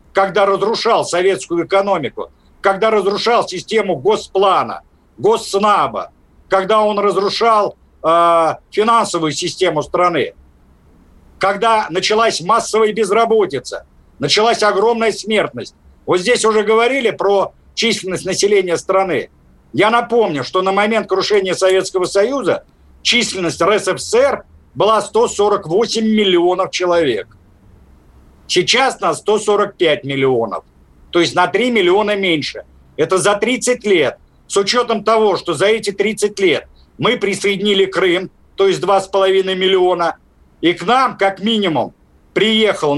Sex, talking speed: male, 110 wpm